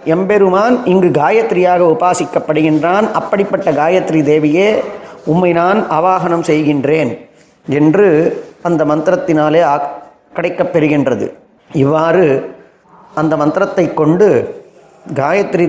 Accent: native